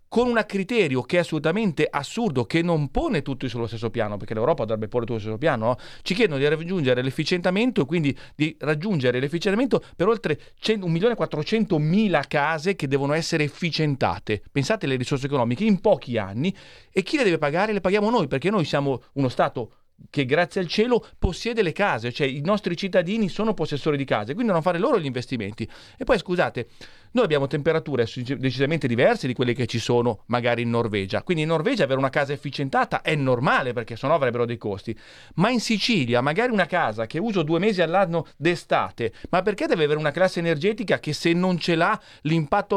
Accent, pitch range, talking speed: native, 135-190 Hz, 190 wpm